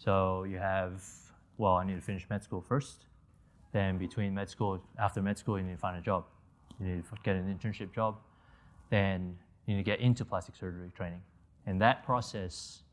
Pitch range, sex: 90-105 Hz, male